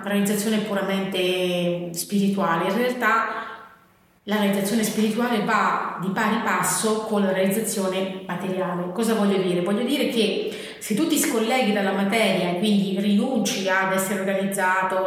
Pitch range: 195-245 Hz